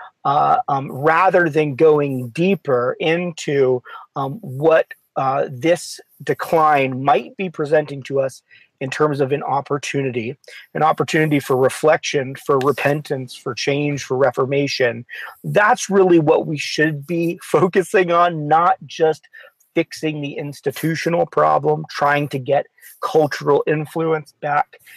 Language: English